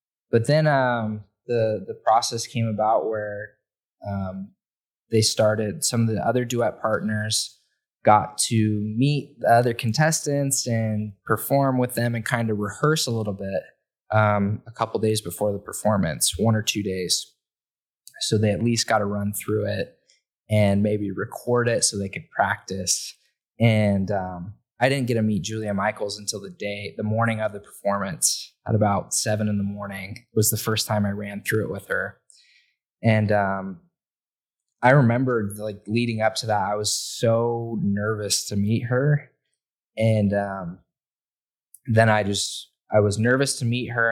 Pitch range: 105-115 Hz